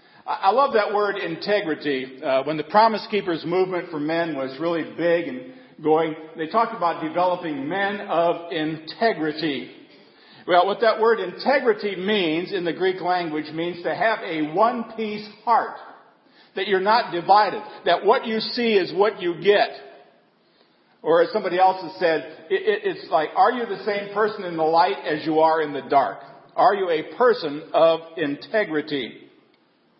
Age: 50-69